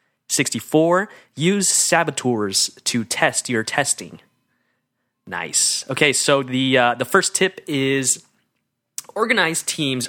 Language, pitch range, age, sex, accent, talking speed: English, 115-145 Hz, 20-39, male, American, 105 wpm